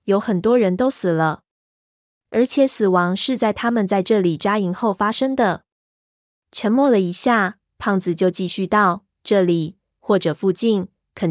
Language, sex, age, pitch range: Chinese, female, 20-39, 175-210 Hz